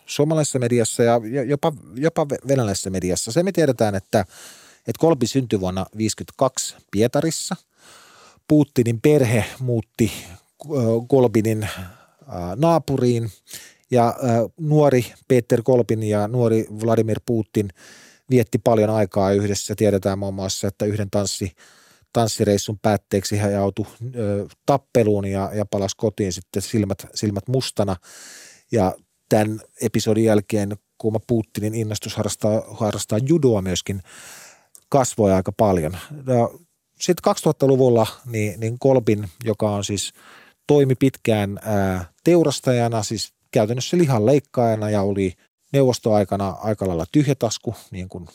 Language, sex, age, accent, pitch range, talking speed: Finnish, male, 30-49, native, 100-125 Hz, 115 wpm